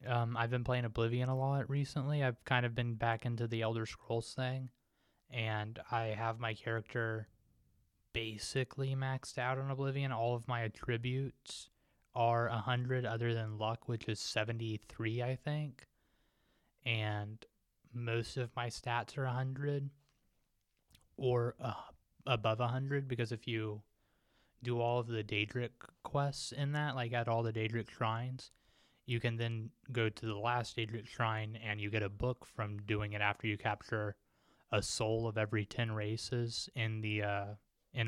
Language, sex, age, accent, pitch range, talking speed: English, male, 20-39, American, 110-125 Hz, 155 wpm